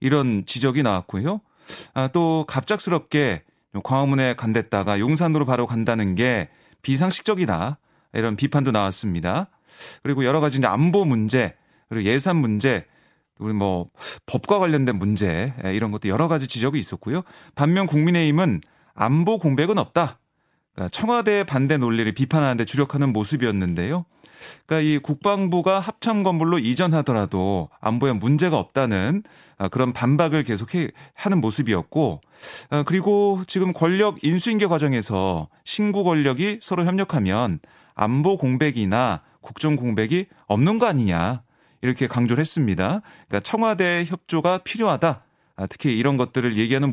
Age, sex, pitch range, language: 30-49, male, 115-175 Hz, Korean